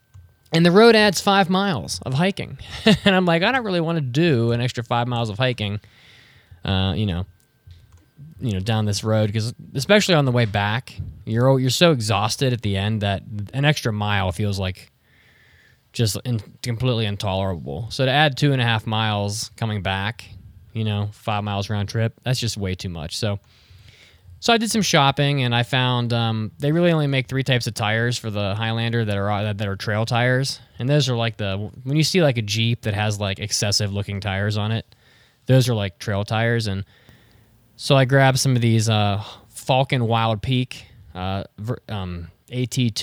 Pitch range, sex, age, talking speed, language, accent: 100-130 Hz, male, 20-39, 195 wpm, English, American